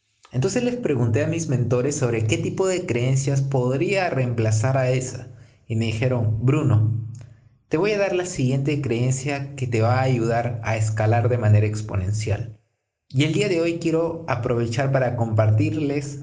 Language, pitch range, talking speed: Spanish, 115-145 Hz, 165 wpm